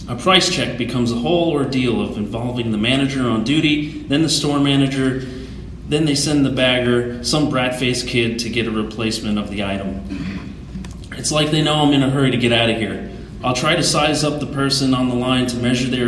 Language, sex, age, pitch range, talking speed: English, male, 30-49, 115-140 Hz, 215 wpm